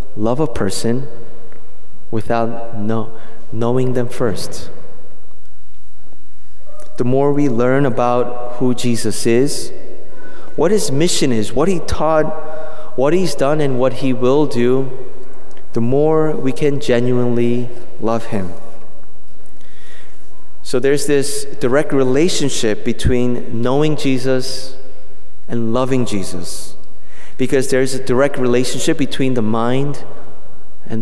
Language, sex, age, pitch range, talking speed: English, male, 30-49, 110-135 Hz, 110 wpm